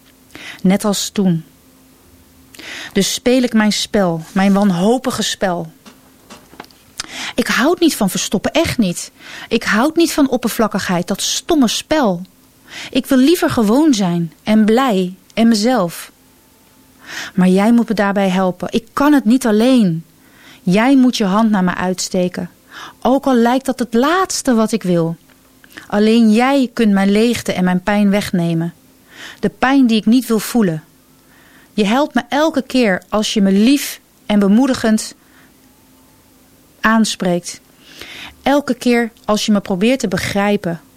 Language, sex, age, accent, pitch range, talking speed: Dutch, female, 30-49, Dutch, 195-250 Hz, 145 wpm